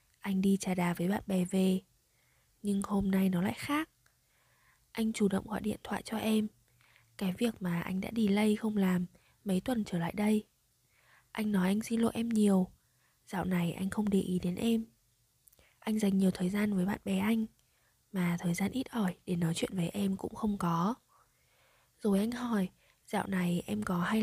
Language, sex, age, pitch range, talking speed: Vietnamese, female, 20-39, 185-225 Hz, 200 wpm